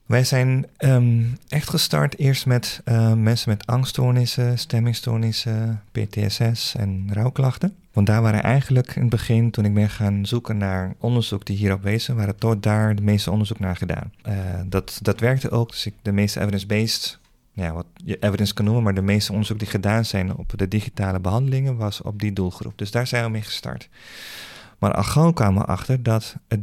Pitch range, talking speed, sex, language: 100-120 Hz, 190 wpm, male, Dutch